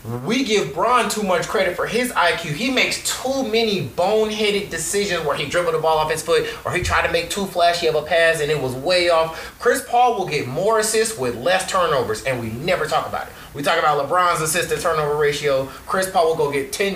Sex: male